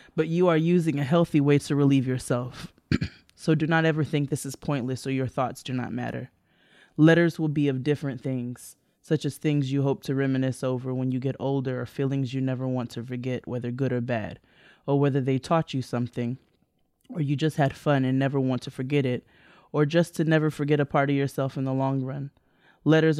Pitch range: 130-150 Hz